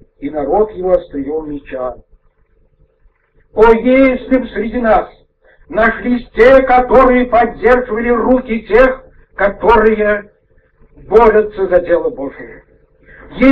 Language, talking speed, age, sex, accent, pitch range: Russian, 95 wpm, 60-79, male, native, 180-245 Hz